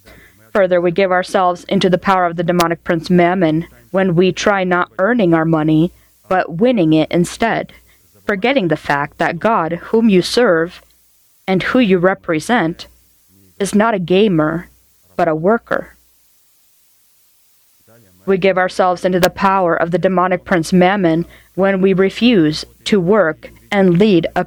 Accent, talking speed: American, 150 wpm